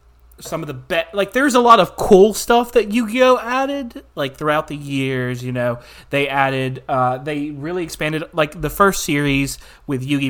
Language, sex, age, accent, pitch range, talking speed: English, male, 30-49, American, 125-155 Hz, 205 wpm